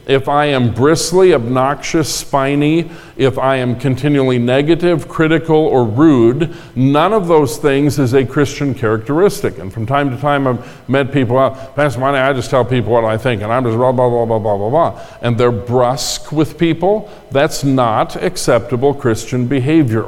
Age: 50-69